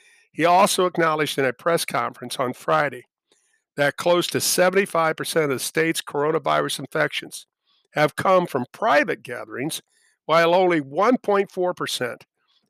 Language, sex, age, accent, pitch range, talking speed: English, male, 50-69, American, 135-170 Hz, 125 wpm